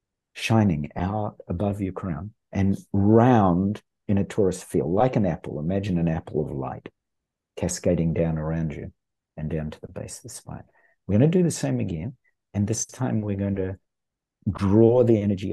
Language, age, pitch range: English, 50-69, 85-115 Hz